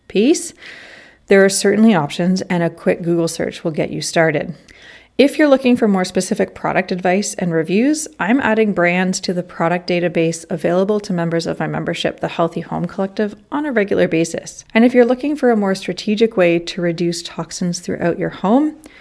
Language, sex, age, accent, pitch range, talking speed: English, female, 30-49, American, 175-225 Hz, 190 wpm